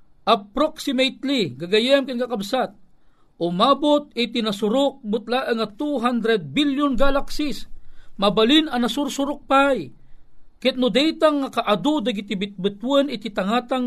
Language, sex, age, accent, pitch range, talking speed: Filipino, male, 50-69, native, 165-225 Hz, 105 wpm